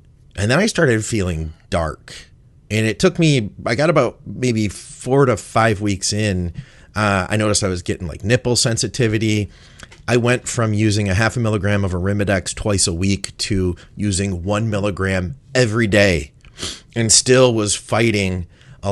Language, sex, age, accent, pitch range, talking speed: English, male, 30-49, American, 95-120 Hz, 165 wpm